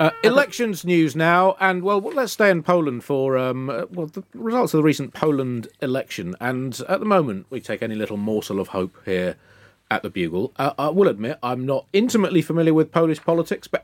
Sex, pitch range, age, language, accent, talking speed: male, 110-160 Hz, 40-59, English, British, 210 wpm